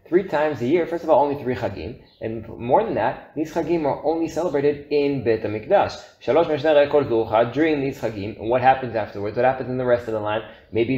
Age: 20-39